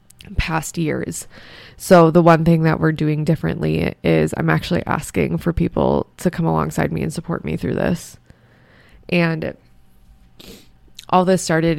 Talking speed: 150 wpm